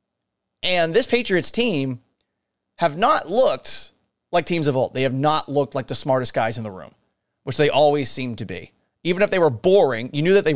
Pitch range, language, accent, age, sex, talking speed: 135-185 Hz, English, American, 30-49, male, 210 wpm